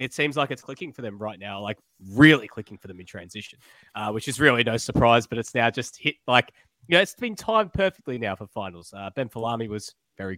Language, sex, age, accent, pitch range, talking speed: English, male, 20-39, Australian, 115-150 Hz, 245 wpm